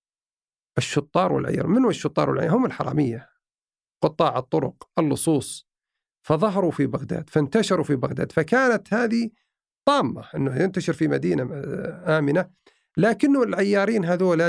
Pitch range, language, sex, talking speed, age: 145-200 Hz, Arabic, male, 110 wpm, 50-69